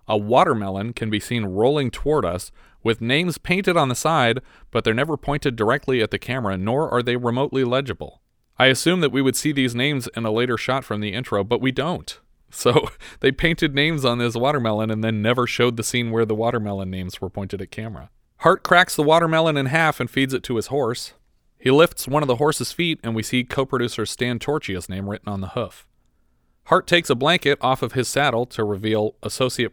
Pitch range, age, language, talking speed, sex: 105-135 Hz, 40-59, English, 215 wpm, male